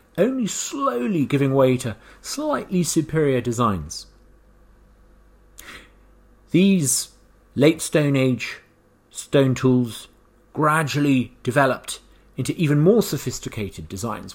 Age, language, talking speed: 40-59, English, 90 wpm